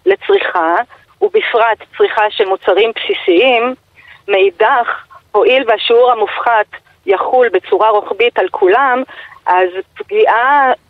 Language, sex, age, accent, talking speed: Hebrew, female, 40-59, native, 95 wpm